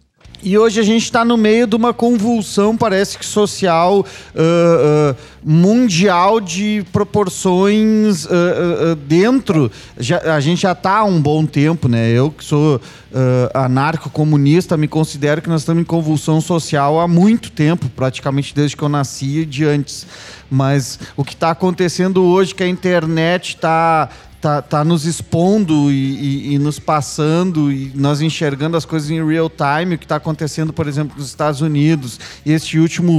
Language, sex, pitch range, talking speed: Portuguese, male, 145-190 Hz, 155 wpm